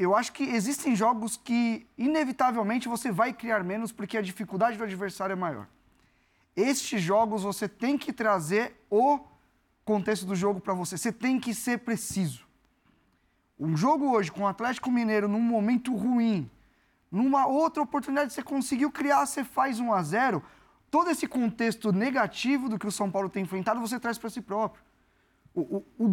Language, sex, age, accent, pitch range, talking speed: Portuguese, male, 20-39, Brazilian, 195-260 Hz, 170 wpm